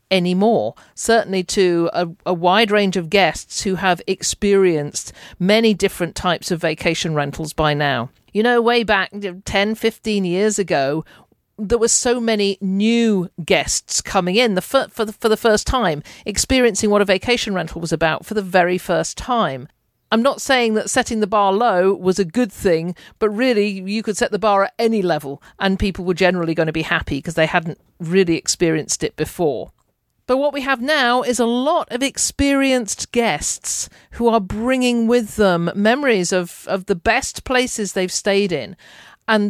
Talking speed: 175 wpm